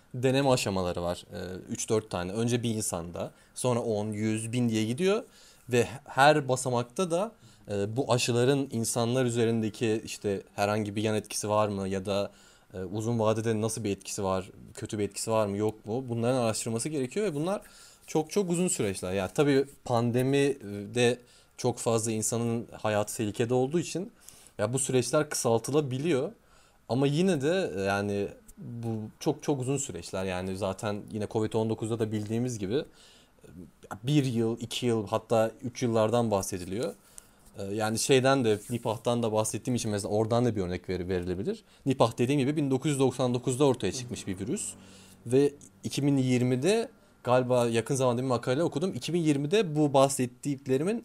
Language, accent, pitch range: Turkish, native, 105-135 Hz